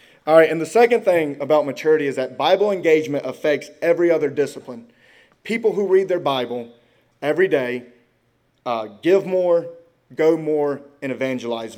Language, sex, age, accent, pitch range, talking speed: English, male, 30-49, American, 130-180 Hz, 155 wpm